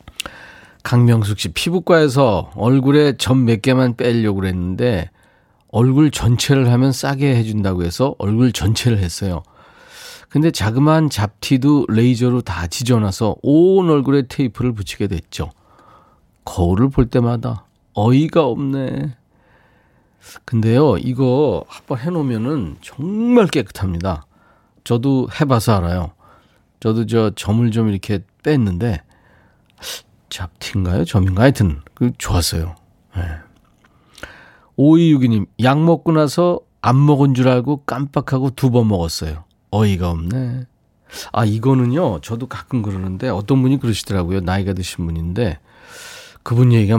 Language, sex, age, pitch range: Korean, male, 40-59, 95-135 Hz